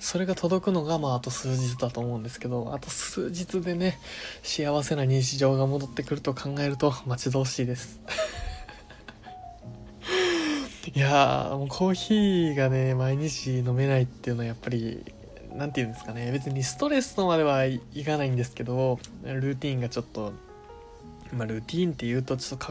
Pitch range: 125-165 Hz